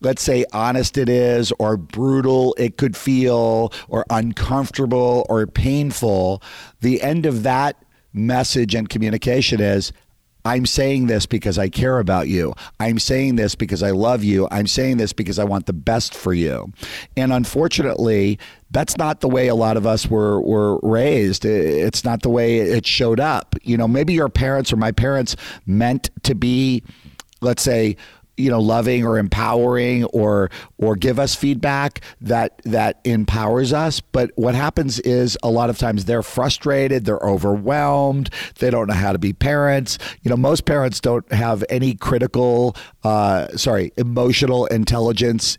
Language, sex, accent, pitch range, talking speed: English, male, American, 105-130 Hz, 165 wpm